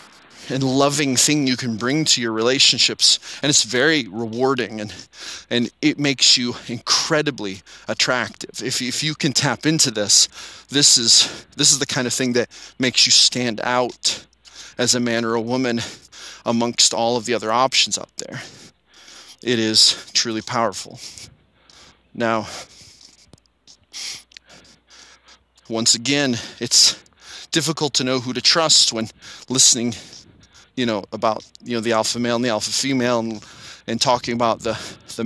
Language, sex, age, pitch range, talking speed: English, male, 30-49, 115-130 Hz, 150 wpm